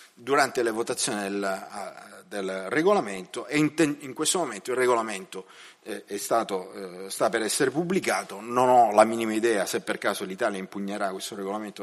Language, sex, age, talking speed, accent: Italian, male, 40-59, 165 wpm, native